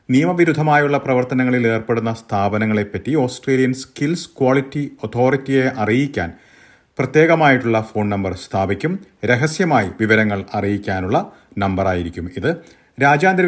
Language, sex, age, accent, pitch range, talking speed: Malayalam, male, 40-59, native, 110-145 Hz, 85 wpm